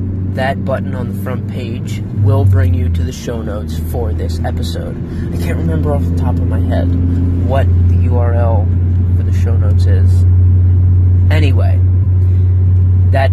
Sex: male